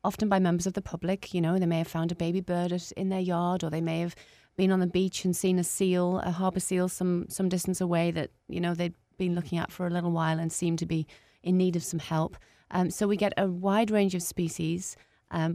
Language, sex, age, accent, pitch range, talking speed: English, female, 30-49, British, 160-185 Hz, 260 wpm